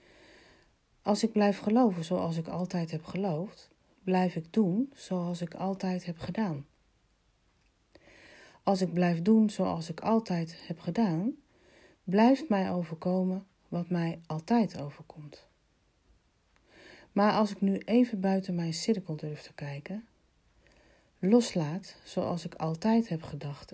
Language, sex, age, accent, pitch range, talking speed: Dutch, female, 40-59, Dutch, 165-200 Hz, 125 wpm